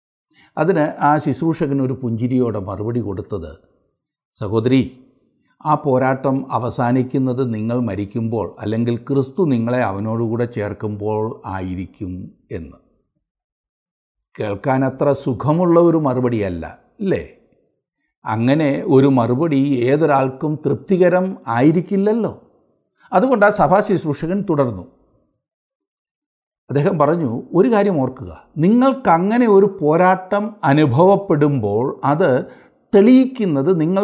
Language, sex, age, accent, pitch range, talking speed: Malayalam, male, 60-79, native, 125-200 Hz, 85 wpm